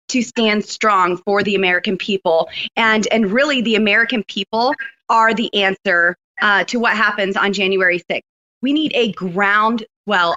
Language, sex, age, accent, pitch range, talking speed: English, female, 20-39, American, 195-230 Hz, 160 wpm